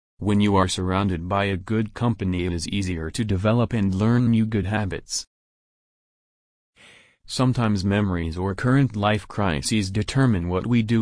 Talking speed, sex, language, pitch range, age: 150 wpm, male, English, 95-115 Hz, 30-49